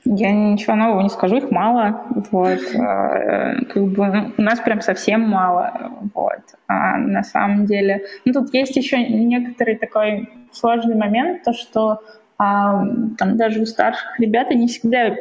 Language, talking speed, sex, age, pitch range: Russian, 150 wpm, female, 20-39, 205-235 Hz